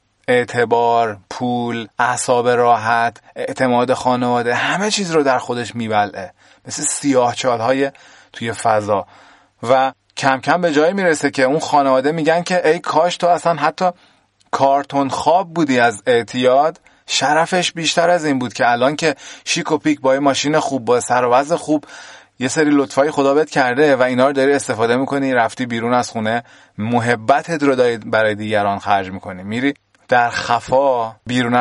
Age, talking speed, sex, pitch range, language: 30-49, 150 wpm, male, 110-140 Hz, Persian